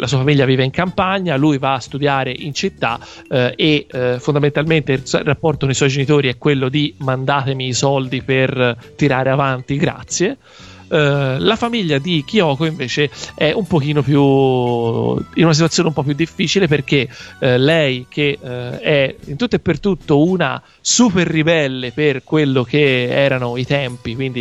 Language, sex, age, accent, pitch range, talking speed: Italian, male, 40-59, native, 130-160 Hz, 170 wpm